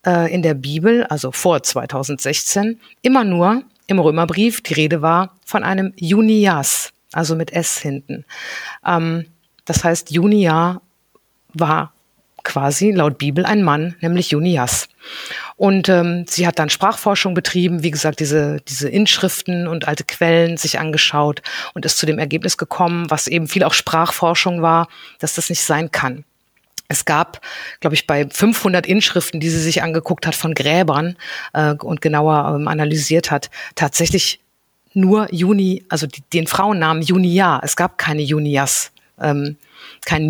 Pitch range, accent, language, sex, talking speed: 150-185 Hz, German, German, female, 145 wpm